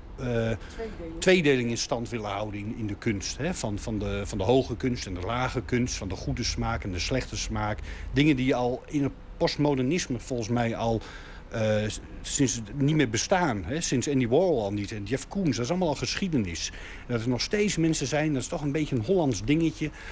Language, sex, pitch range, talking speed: Dutch, male, 110-160 Hz, 220 wpm